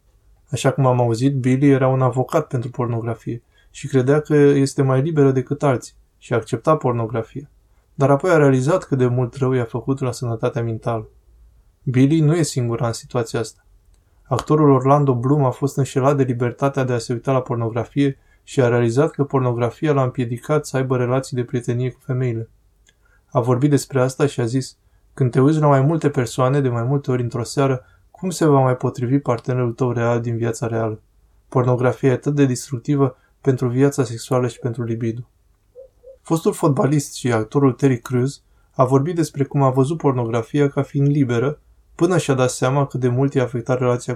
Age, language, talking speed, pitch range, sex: 20-39, Romanian, 190 wpm, 120-140 Hz, male